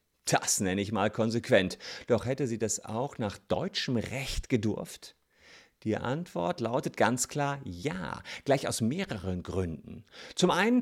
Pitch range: 100-135 Hz